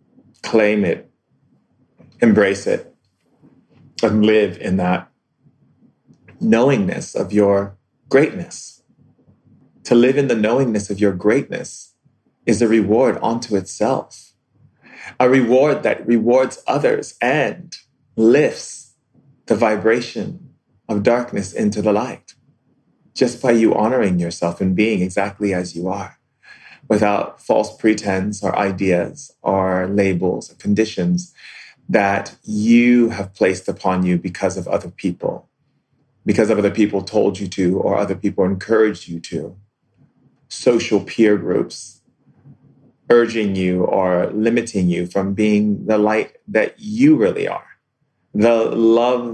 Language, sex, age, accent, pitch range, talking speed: English, male, 30-49, American, 95-120 Hz, 120 wpm